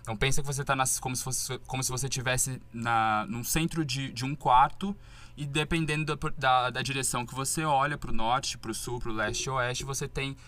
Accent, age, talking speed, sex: Brazilian, 20-39, 220 wpm, male